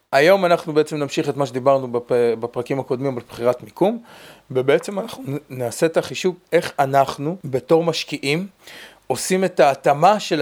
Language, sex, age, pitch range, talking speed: Hebrew, male, 30-49, 140-180 Hz, 145 wpm